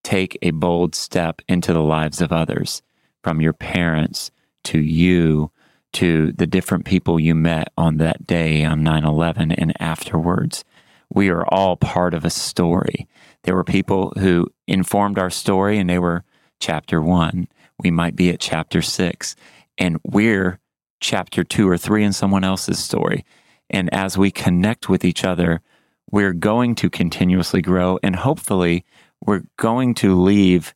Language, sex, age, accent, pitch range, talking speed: English, male, 30-49, American, 85-100 Hz, 155 wpm